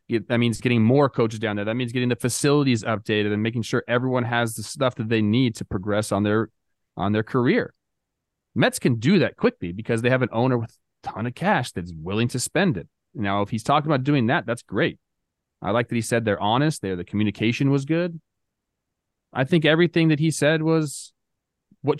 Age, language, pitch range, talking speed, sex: 30-49, English, 110-145 Hz, 220 wpm, male